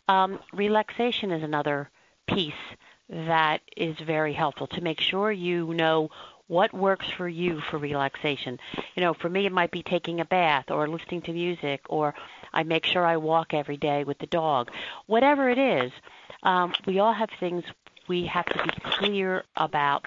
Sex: female